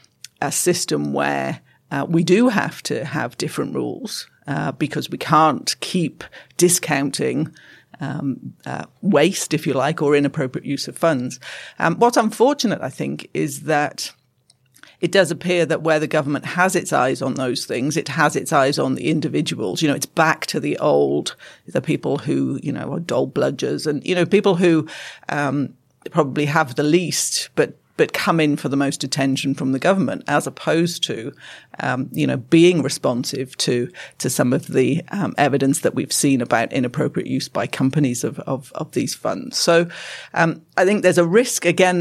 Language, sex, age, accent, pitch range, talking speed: English, female, 50-69, British, 140-175 Hz, 180 wpm